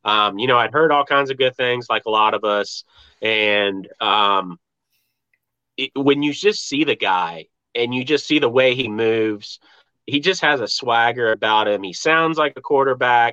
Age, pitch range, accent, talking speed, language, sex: 30-49, 110-140 Hz, American, 200 wpm, English, male